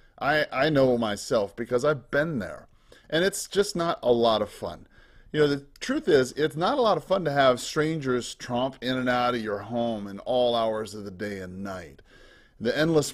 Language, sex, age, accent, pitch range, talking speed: English, male, 30-49, American, 115-155 Hz, 215 wpm